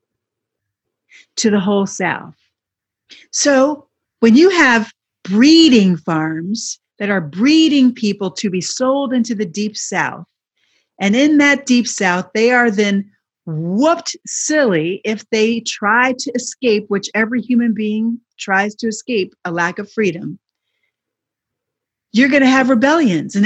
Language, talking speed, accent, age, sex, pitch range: English, 135 wpm, American, 40-59, female, 190-255 Hz